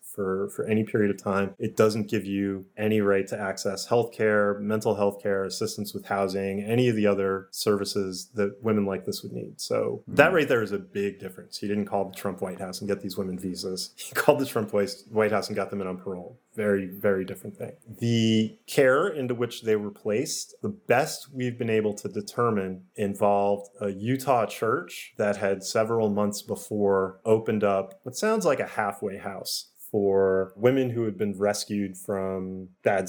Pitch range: 100-110 Hz